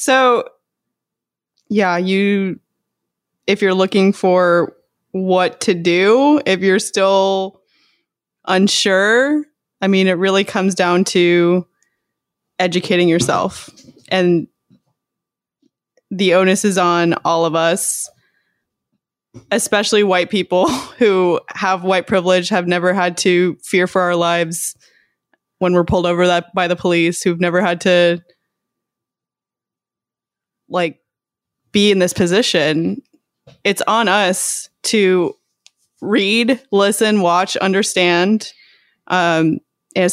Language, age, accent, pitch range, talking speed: English, 20-39, American, 175-200 Hz, 110 wpm